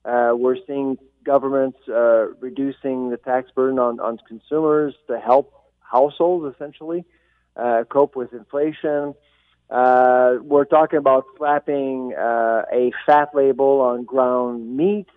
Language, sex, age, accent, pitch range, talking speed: English, male, 40-59, American, 125-155 Hz, 125 wpm